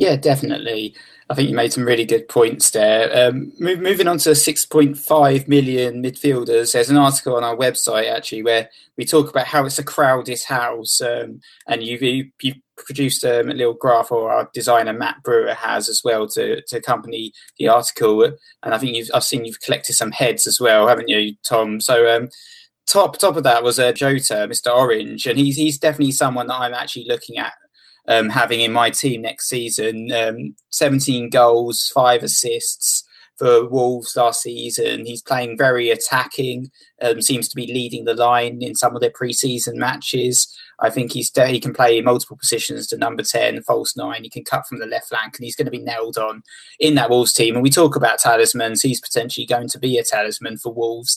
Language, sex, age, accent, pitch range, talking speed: English, male, 20-39, British, 115-145 Hz, 200 wpm